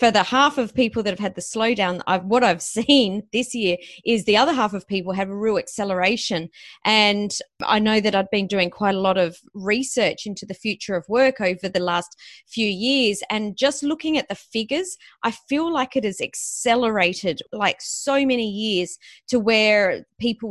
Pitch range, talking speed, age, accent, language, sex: 190-230 Hz, 195 wpm, 30-49, Australian, English, female